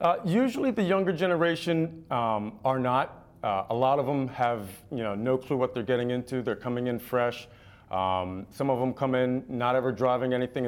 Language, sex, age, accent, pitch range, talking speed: English, male, 40-59, American, 115-140 Hz, 200 wpm